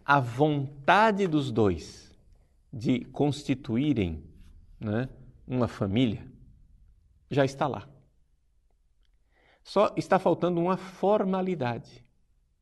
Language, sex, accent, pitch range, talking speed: Portuguese, male, Brazilian, 105-155 Hz, 80 wpm